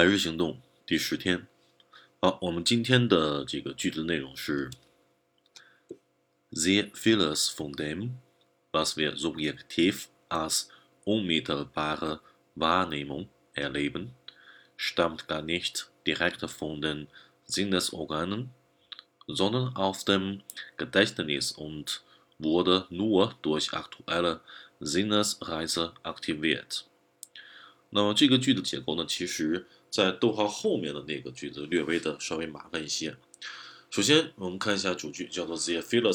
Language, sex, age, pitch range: Chinese, male, 30-49, 75-105 Hz